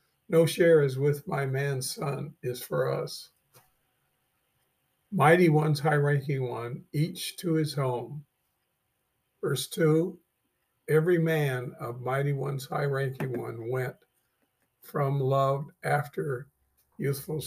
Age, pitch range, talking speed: 50-69, 125-155 Hz, 115 wpm